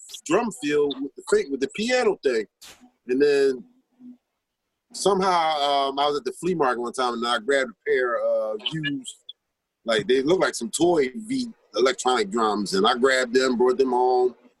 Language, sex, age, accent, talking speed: English, male, 30-49, American, 180 wpm